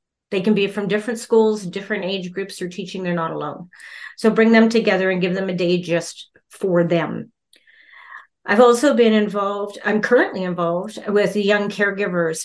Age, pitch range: 40-59, 180-215 Hz